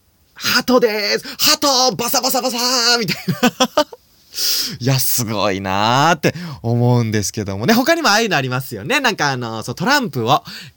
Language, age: Japanese, 20-39